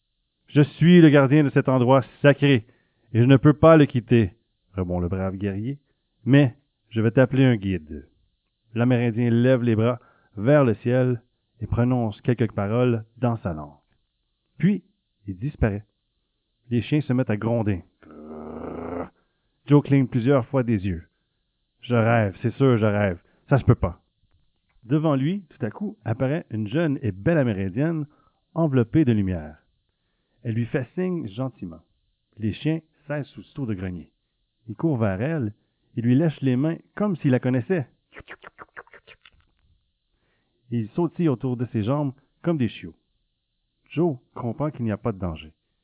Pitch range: 100-140 Hz